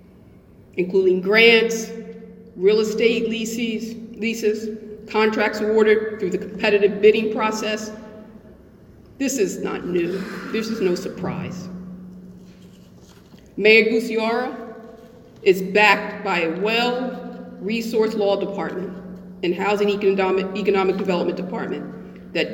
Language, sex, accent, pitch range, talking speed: English, female, American, 190-220 Hz, 100 wpm